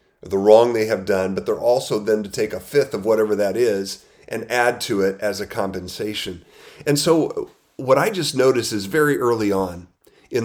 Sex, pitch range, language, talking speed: male, 100-125 Hz, English, 200 wpm